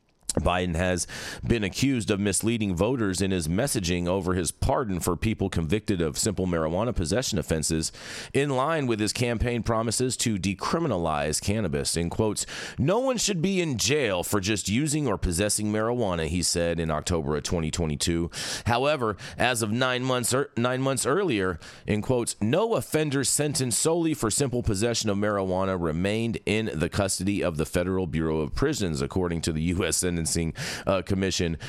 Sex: male